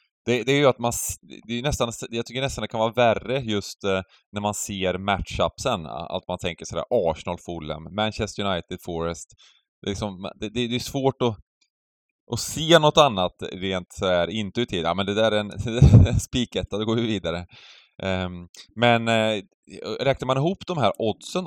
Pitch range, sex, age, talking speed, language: 85-115 Hz, male, 20-39, 165 wpm, Swedish